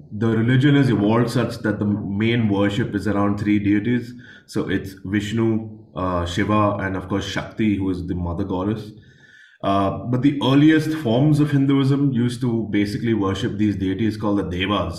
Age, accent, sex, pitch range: 20-39, Indian, male, 100-120 Hz